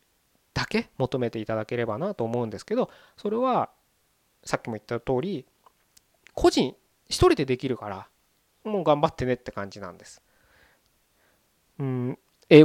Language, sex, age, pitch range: Japanese, male, 20-39, 110-160 Hz